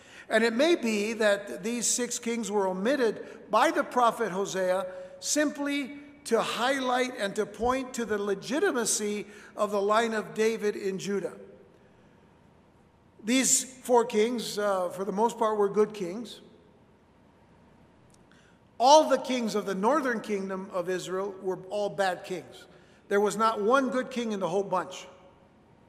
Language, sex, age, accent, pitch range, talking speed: English, male, 60-79, American, 190-240 Hz, 150 wpm